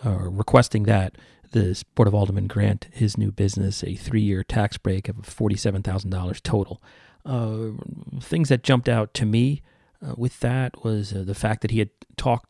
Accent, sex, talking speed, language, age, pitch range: American, male, 175 wpm, English, 40-59, 100-125 Hz